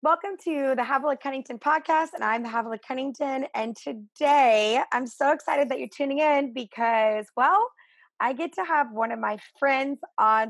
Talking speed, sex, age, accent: 175 wpm, female, 20-39, American